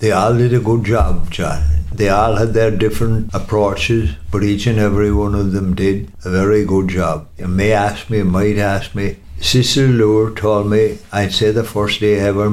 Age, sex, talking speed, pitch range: 60-79, male, 210 wpm, 95-110 Hz